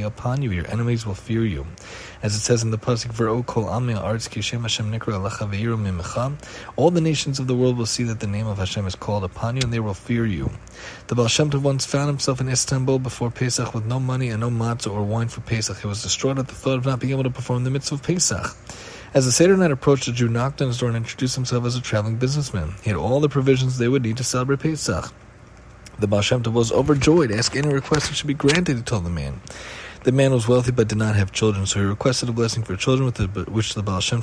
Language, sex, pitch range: English, male, 105-130 Hz